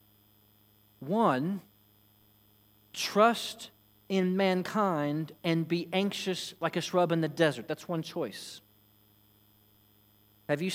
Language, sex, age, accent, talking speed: English, male, 40-59, American, 100 wpm